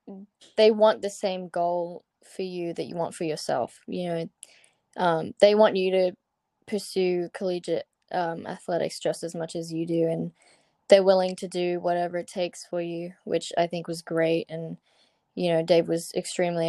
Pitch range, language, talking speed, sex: 175-205 Hz, English, 180 wpm, female